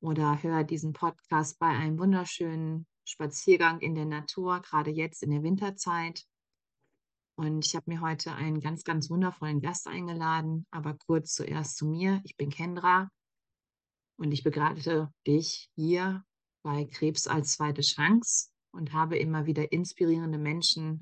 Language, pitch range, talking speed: German, 155-185 Hz, 145 wpm